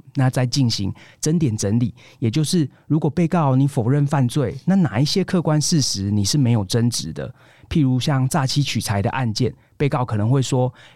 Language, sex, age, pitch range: Chinese, male, 30-49, 115-145 Hz